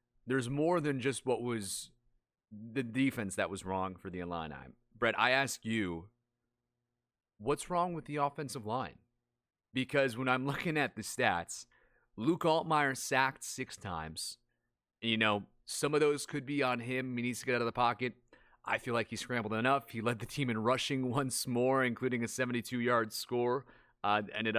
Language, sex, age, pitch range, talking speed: English, male, 30-49, 110-135 Hz, 180 wpm